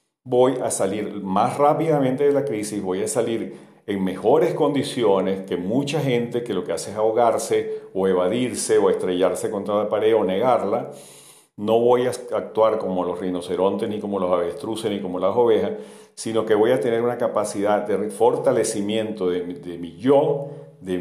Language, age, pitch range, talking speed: Spanish, 50-69, 95-145 Hz, 175 wpm